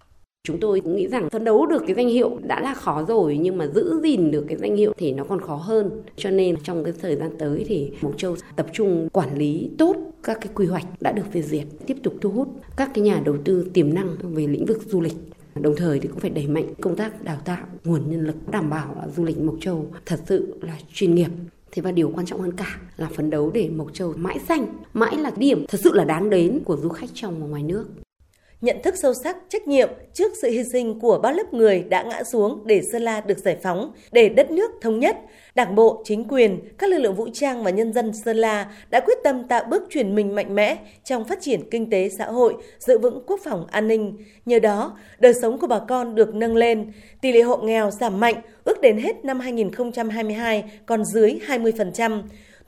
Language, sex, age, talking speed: Vietnamese, female, 20-39, 240 wpm